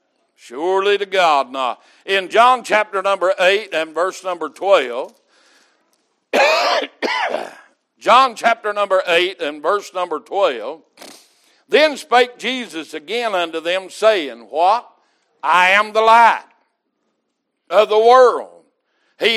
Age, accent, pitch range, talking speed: 60-79, American, 190-245 Hz, 115 wpm